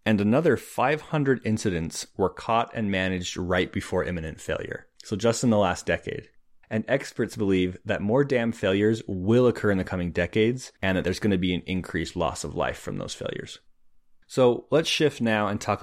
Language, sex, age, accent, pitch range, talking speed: English, male, 30-49, American, 90-115 Hz, 195 wpm